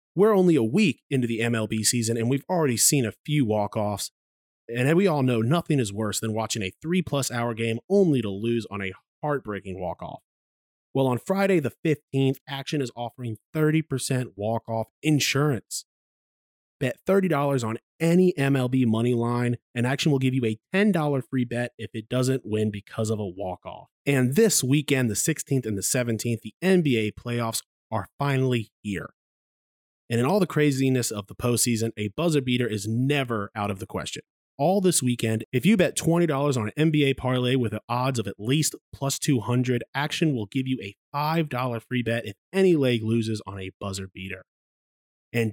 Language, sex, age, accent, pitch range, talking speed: English, male, 30-49, American, 110-150 Hz, 180 wpm